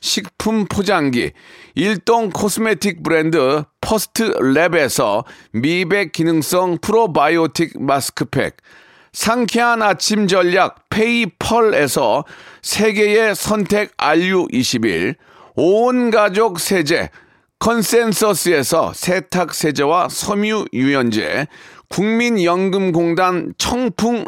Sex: male